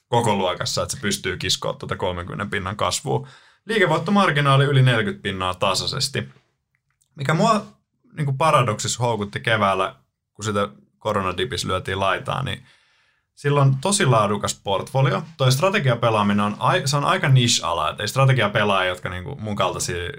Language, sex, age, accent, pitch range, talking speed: Finnish, male, 20-39, native, 100-135 Hz, 130 wpm